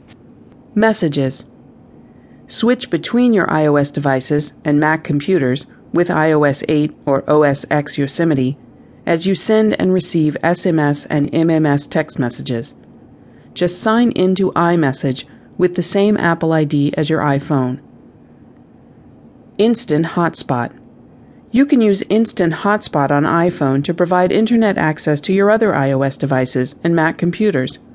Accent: American